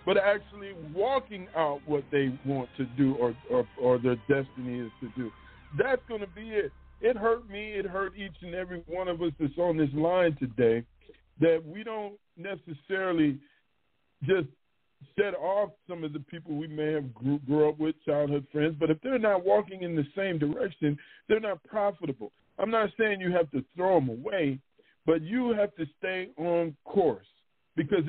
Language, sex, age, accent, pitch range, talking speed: English, male, 40-59, American, 150-200 Hz, 185 wpm